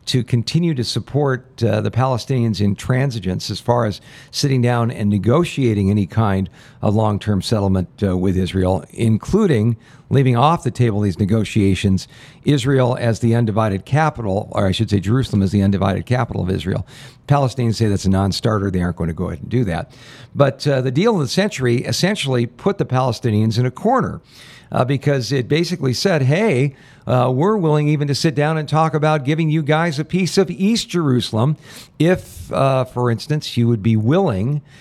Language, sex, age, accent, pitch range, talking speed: English, male, 50-69, American, 110-145 Hz, 185 wpm